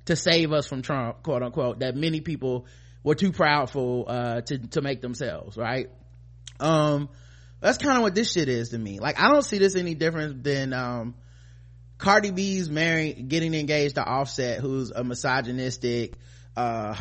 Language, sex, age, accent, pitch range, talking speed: English, male, 20-39, American, 120-175 Hz, 175 wpm